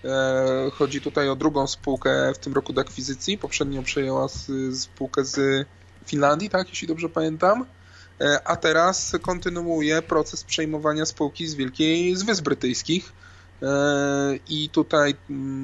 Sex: male